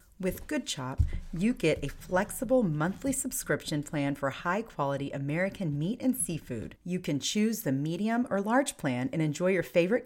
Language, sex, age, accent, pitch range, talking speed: English, female, 40-59, American, 150-215 Hz, 165 wpm